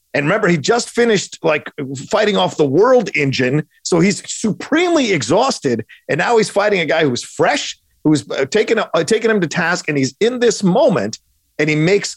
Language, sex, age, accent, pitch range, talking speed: English, male, 40-59, American, 150-210 Hz, 210 wpm